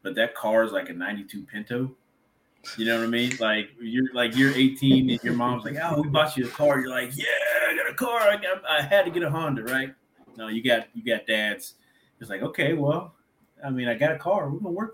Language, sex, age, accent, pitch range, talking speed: English, male, 30-49, American, 110-140 Hz, 255 wpm